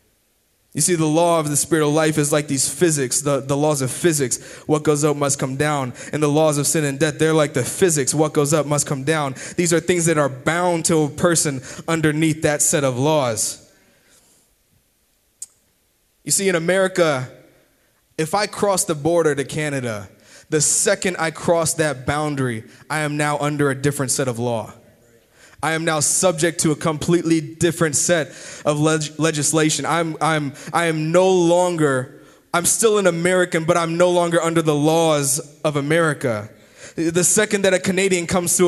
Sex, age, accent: male, 20-39, American